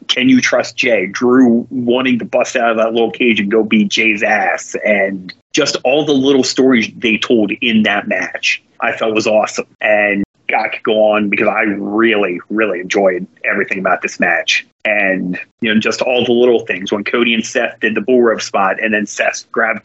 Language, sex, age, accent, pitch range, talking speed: English, male, 30-49, American, 105-120 Hz, 205 wpm